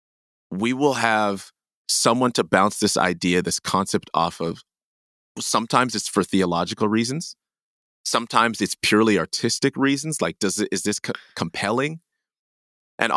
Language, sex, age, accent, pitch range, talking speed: English, male, 30-49, American, 100-130 Hz, 135 wpm